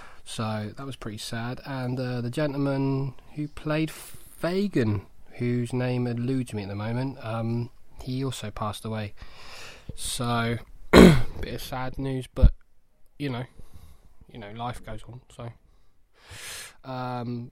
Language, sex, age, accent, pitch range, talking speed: English, male, 20-39, British, 110-130 Hz, 135 wpm